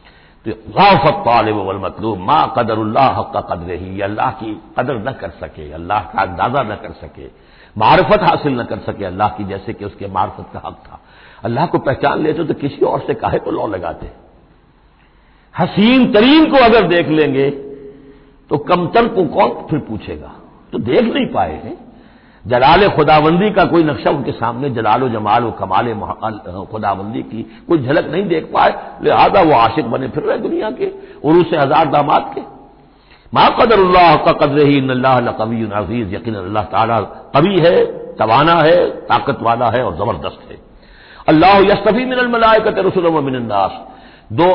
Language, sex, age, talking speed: Hindi, male, 60-79, 145 wpm